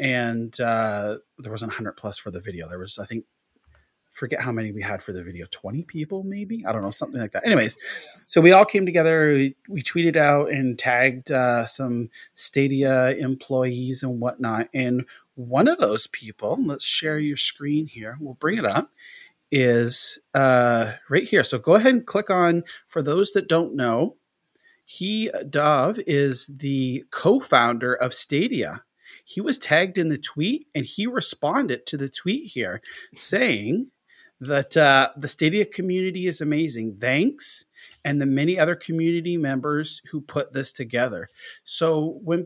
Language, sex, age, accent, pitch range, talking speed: English, male, 30-49, American, 125-175 Hz, 165 wpm